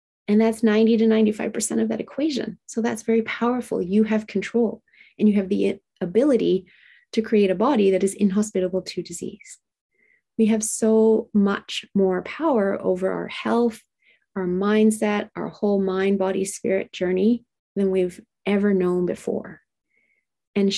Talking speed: 150 wpm